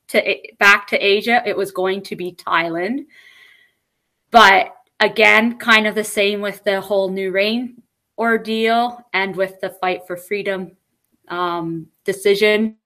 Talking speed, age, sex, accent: 135 wpm, 20-39, female, American